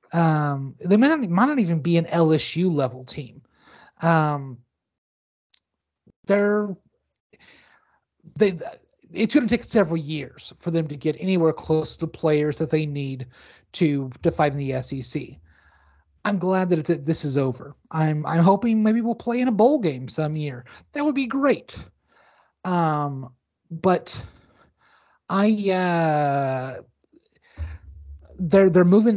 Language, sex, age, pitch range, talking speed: English, male, 30-49, 140-180 Hz, 140 wpm